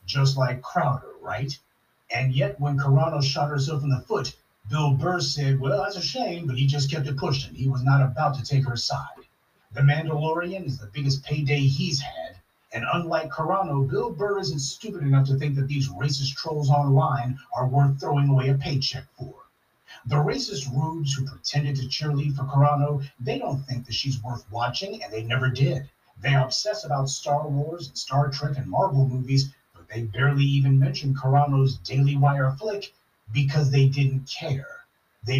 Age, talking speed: 30-49, 185 wpm